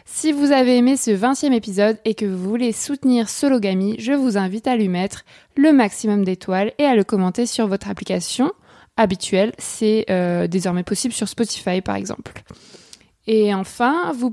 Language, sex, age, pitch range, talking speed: French, female, 20-39, 195-240 Hz, 170 wpm